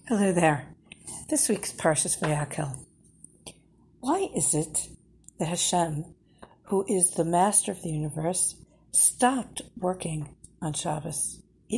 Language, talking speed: English, 115 wpm